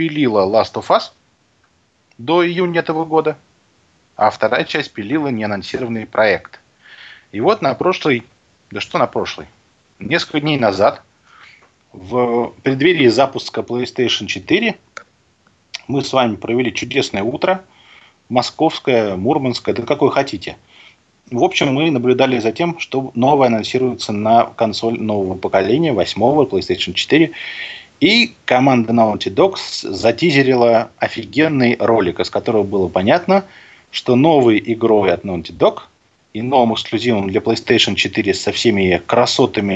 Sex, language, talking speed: male, Russian, 125 wpm